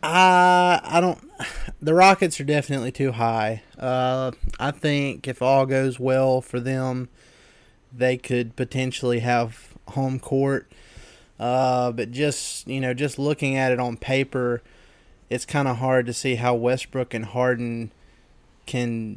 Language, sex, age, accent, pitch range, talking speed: English, male, 20-39, American, 120-140 Hz, 145 wpm